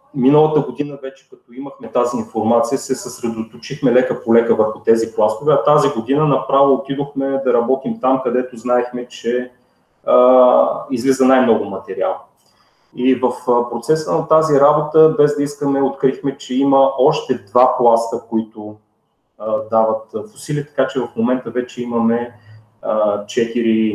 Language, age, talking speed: Bulgarian, 30-49, 140 wpm